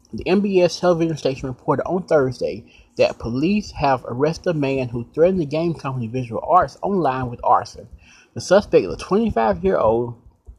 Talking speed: 170 wpm